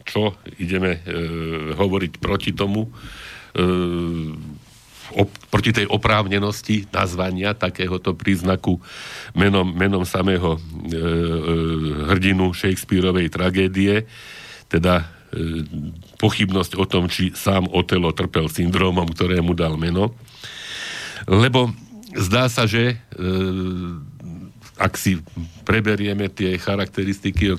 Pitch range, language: 85-100 Hz, Slovak